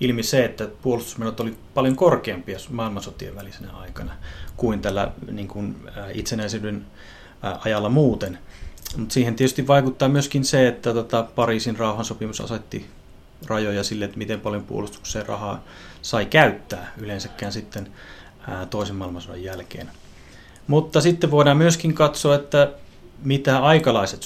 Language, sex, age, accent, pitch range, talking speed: Finnish, male, 30-49, native, 100-130 Hz, 130 wpm